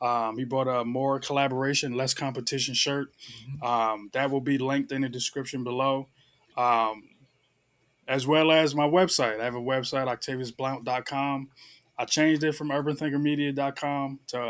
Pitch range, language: 120-135 Hz, English